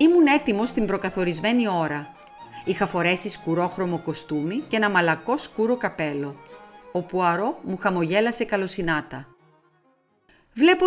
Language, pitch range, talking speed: Greek, 165-240 Hz, 110 wpm